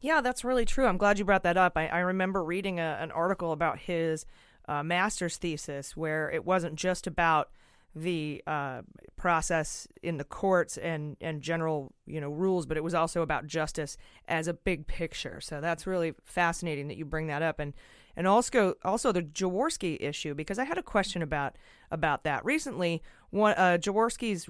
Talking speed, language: 190 wpm, English